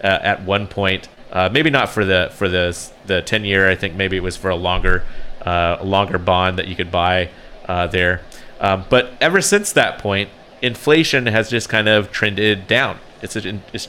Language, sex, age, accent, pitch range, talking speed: English, male, 30-49, American, 90-110 Hz, 205 wpm